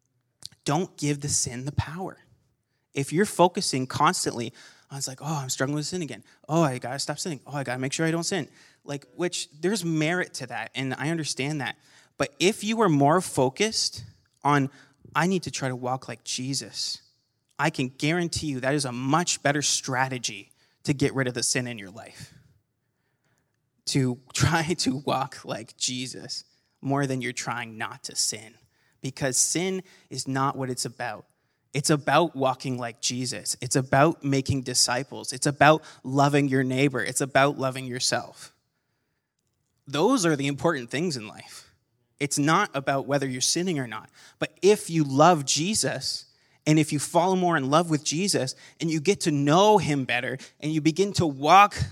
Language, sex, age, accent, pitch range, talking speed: English, male, 30-49, American, 125-155 Hz, 180 wpm